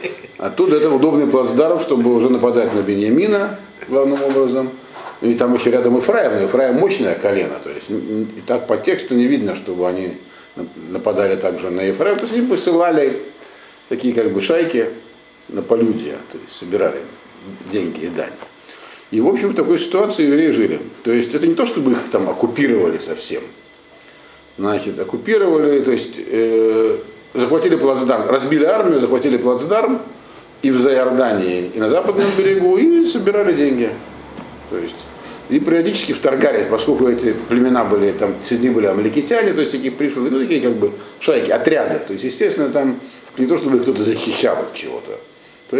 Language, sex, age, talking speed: Russian, male, 50-69, 165 wpm